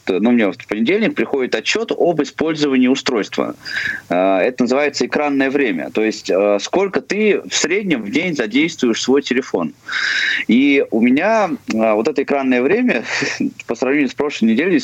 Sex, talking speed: male, 150 wpm